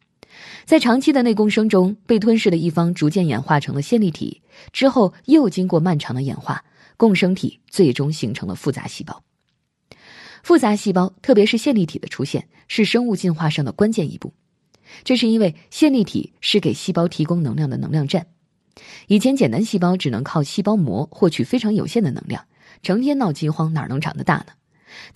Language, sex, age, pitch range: Chinese, female, 20-39, 155-225 Hz